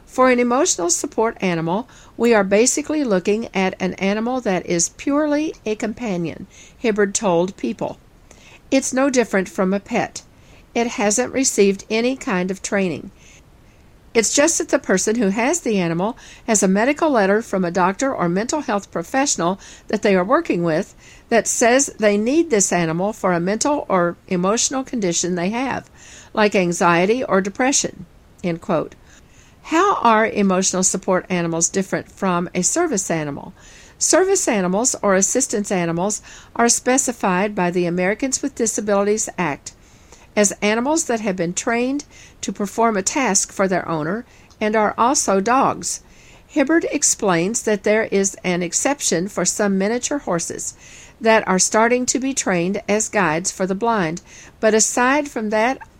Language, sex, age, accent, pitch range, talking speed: English, female, 50-69, American, 185-250 Hz, 155 wpm